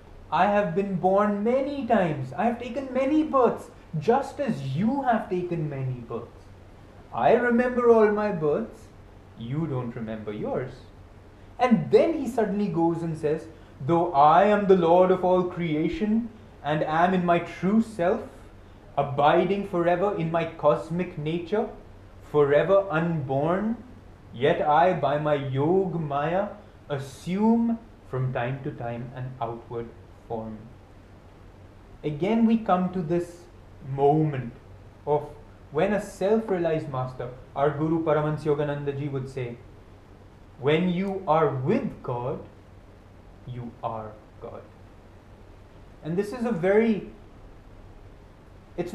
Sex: male